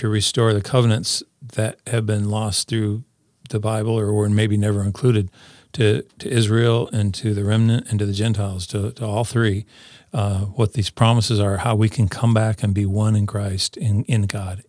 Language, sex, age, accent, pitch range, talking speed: English, male, 40-59, American, 100-115 Hz, 200 wpm